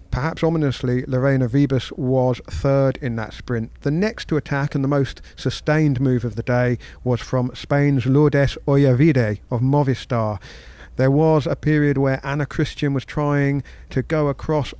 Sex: male